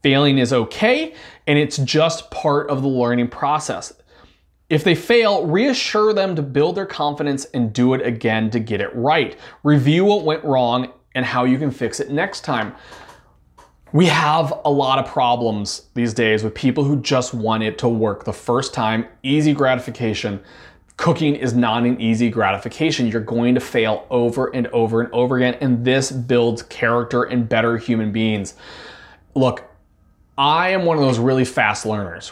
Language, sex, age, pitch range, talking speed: English, male, 20-39, 115-145 Hz, 175 wpm